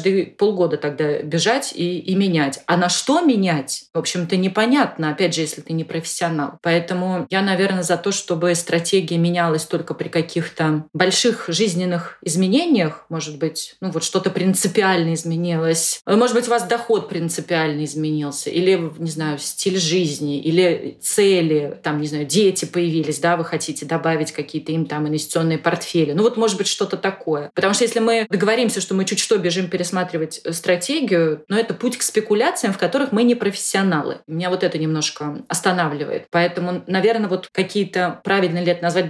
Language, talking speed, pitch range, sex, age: Russian, 170 wpm, 160-190 Hz, female, 30-49